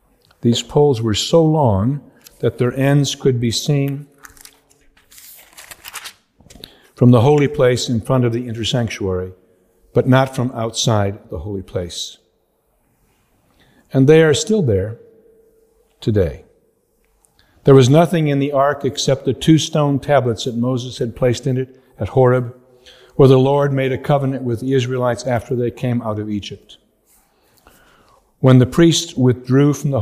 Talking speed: 145 wpm